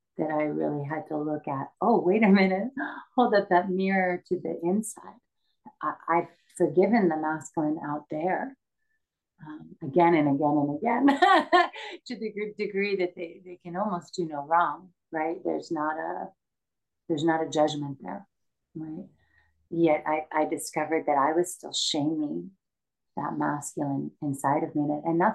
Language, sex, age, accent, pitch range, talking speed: English, female, 40-59, American, 150-180 Hz, 165 wpm